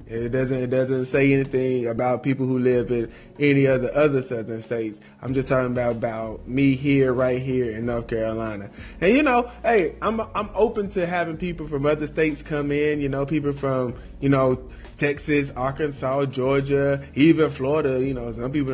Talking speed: 185 wpm